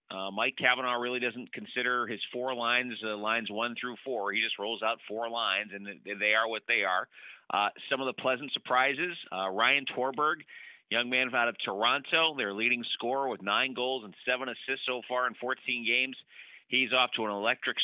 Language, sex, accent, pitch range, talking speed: English, male, American, 115-135 Hz, 200 wpm